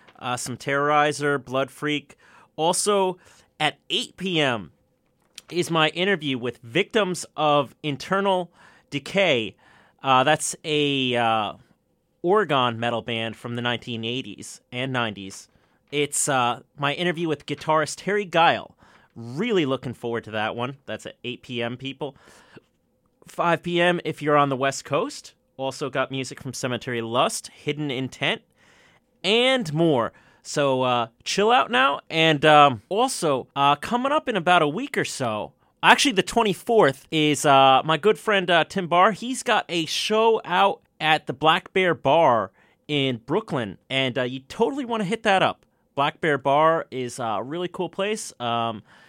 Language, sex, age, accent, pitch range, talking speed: English, male, 30-49, American, 130-180 Hz, 150 wpm